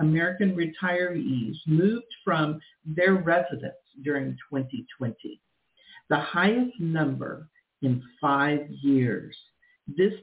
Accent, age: American, 50-69